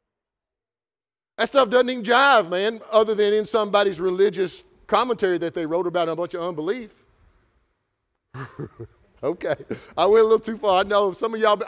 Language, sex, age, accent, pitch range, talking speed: English, male, 50-69, American, 165-230 Hz, 165 wpm